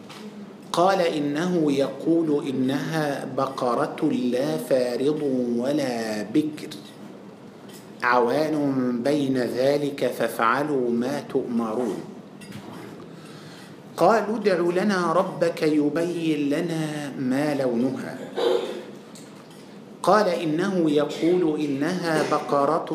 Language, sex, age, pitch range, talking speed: Malay, male, 50-69, 140-170 Hz, 75 wpm